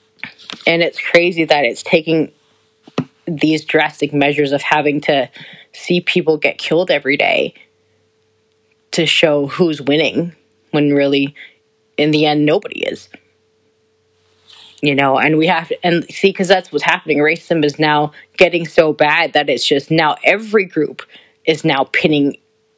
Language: English